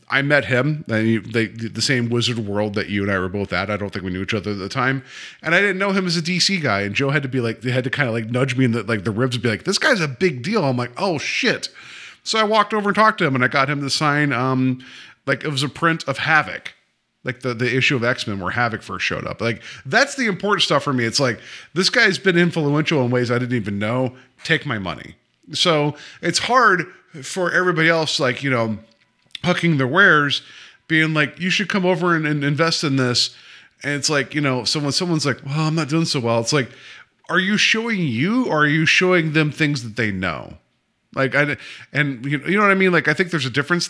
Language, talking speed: English, 260 wpm